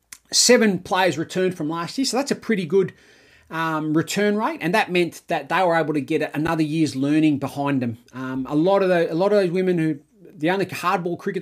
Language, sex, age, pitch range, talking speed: English, male, 30-49, 150-190 Hz, 225 wpm